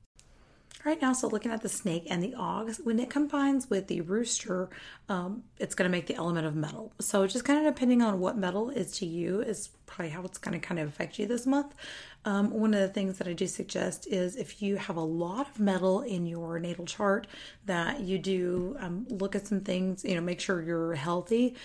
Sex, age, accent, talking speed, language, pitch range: female, 30-49, American, 230 wpm, English, 180-220 Hz